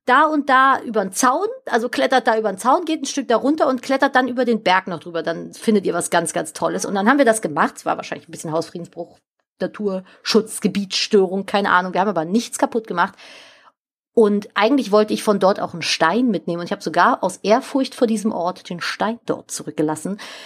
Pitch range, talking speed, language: 195-260 Hz, 225 wpm, German